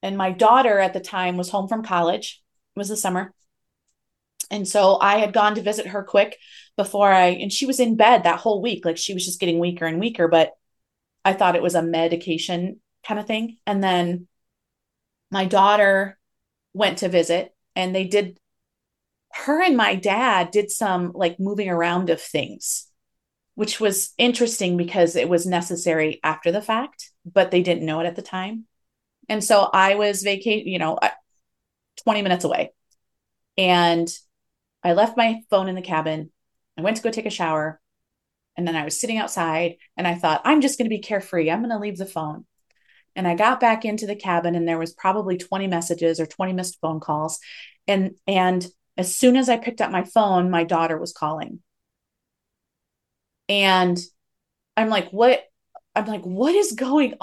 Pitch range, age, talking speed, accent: 175-215 Hz, 30-49, 185 wpm, American